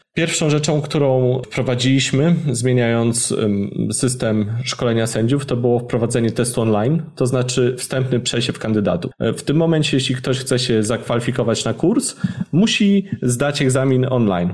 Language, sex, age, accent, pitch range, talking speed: Polish, male, 20-39, native, 110-135 Hz, 130 wpm